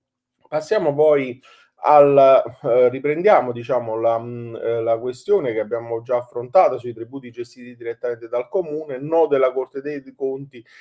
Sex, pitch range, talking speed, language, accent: male, 115-175 Hz, 130 wpm, Italian, native